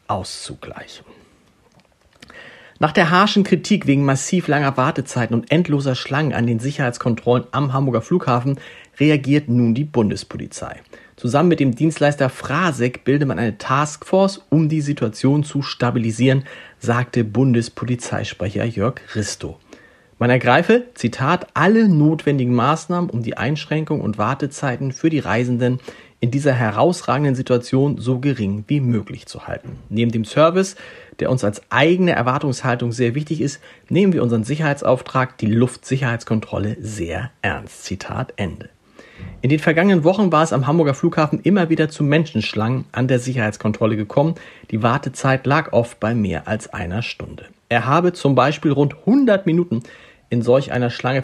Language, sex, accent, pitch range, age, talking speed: German, male, German, 120-150 Hz, 40-59, 140 wpm